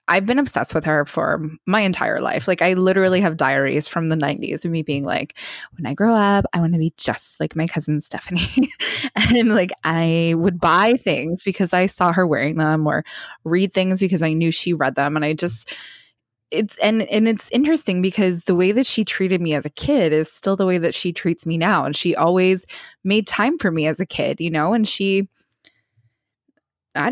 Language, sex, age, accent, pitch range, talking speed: English, female, 20-39, American, 160-205 Hz, 215 wpm